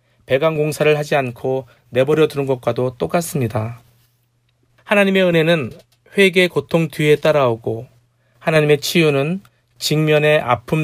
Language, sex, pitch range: Korean, male, 120-160 Hz